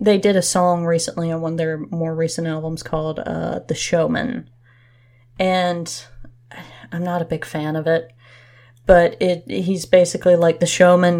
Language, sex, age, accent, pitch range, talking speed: English, female, 20-39, American, 125-175 Hz, 165 wpm